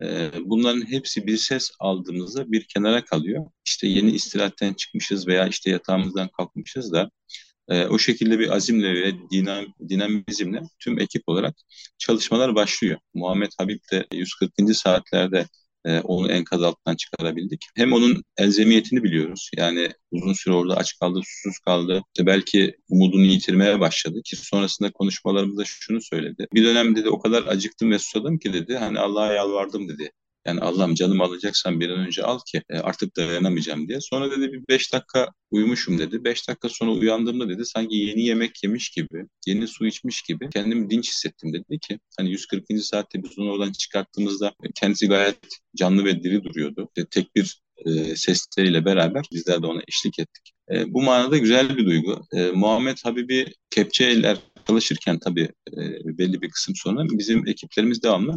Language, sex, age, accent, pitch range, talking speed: Turkish, male, 40-59, native, 90-110 Hz, 160 wpm